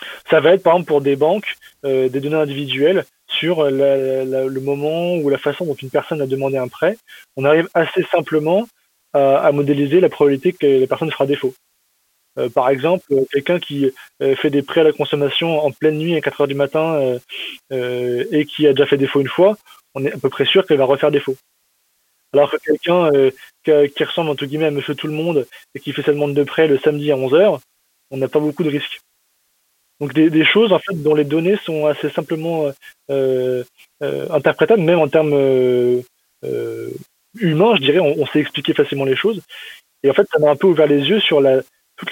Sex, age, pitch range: male, 20-39, 140-170 Hz